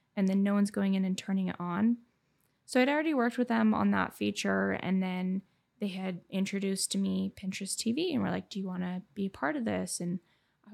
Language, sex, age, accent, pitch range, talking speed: English, female, 10-29, American, 195-240 Hz, 235 wpm